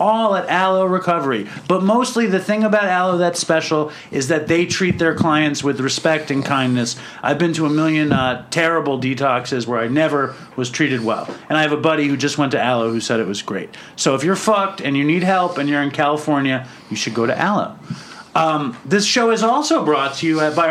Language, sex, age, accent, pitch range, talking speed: English, male, 40-59, American, 145-190 Hz, 225 wpm